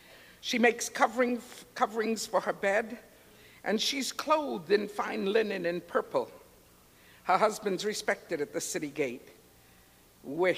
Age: 60-79